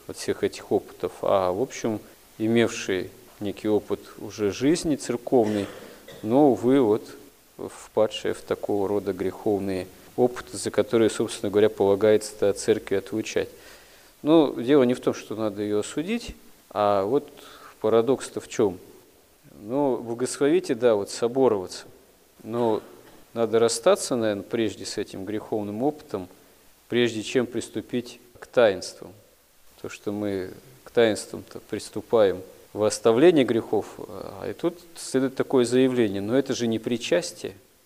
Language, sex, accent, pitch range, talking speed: Russian, male, native, 105-135 Hz, 130 wpm